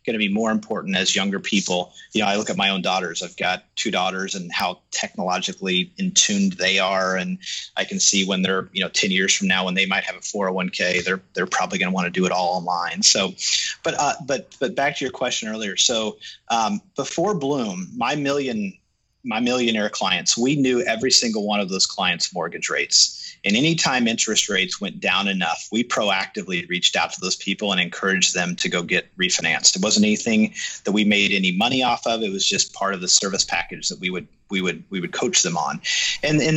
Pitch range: 95-160 Hz